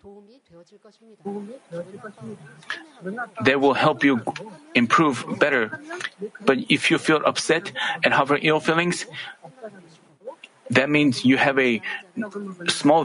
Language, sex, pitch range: Korean, male, 140-205 Hz